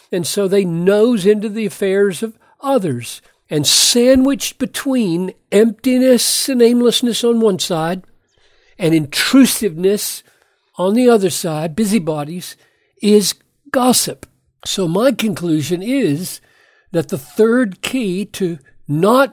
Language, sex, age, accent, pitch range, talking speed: English, male, 60-79, American, 155-220 Hz, 115 wpm